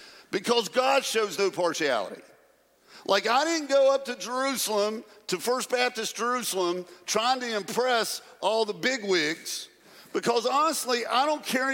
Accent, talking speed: American, 140 wpm